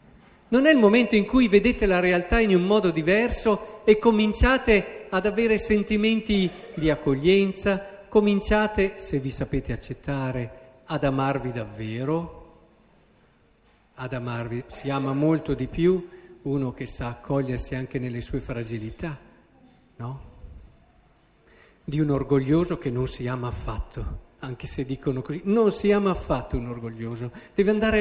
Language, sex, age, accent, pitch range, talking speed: Italian, male, 50-69, native, 140-220 Hz, 135 wpm